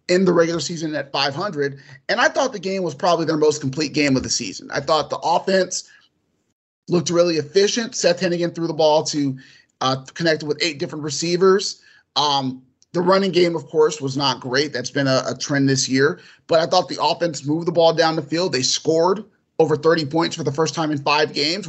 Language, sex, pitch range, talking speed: English, male, 145-180 Hz, 215 wpm